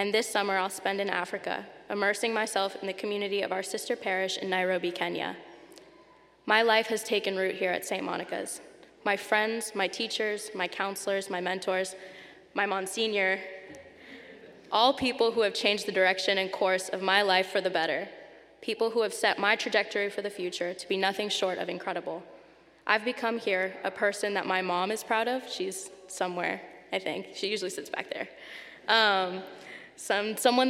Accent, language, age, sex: American, English, 10-29, female